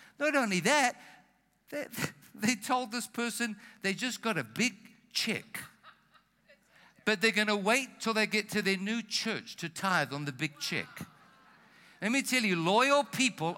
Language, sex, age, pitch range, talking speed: English, male, 60-79, 150-215 Hz, 170 wpm